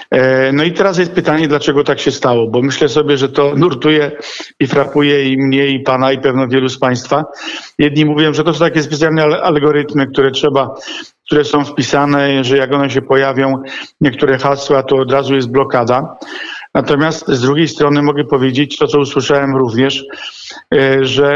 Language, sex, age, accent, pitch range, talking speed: Polish, male, 50-69, native, 135-150 Hz, 175 wpm